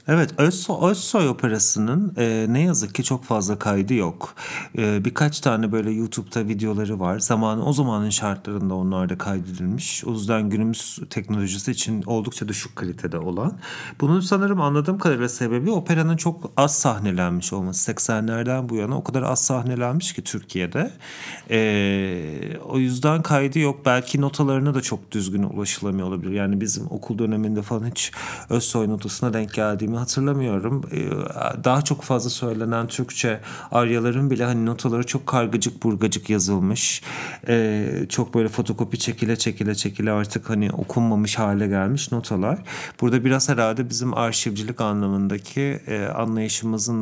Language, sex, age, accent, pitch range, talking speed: English, male, 40-59, Turkish, 105-130 Hz, 140 wpm